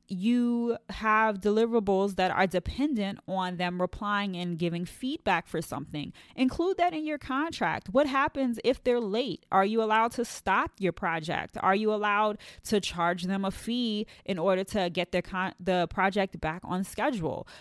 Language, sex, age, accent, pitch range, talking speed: English, female, 20-39, American, 175-230 Hz, 165 wpm